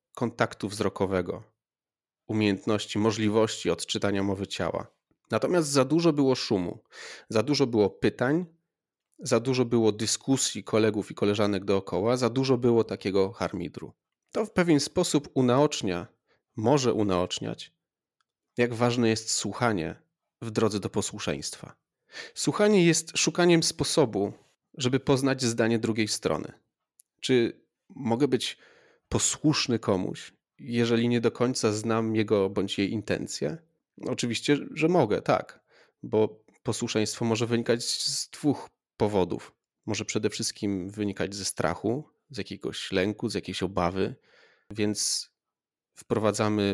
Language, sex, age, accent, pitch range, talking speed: Polish, male, 30-49, native, 105-130 Hz, 120 wpm